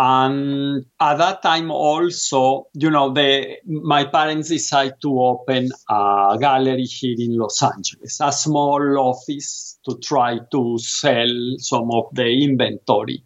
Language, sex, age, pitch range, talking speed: English, male, 50-69, 115-140 Hz, 130 wpm